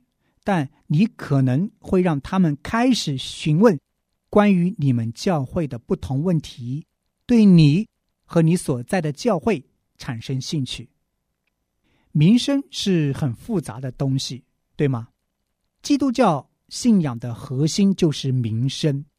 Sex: male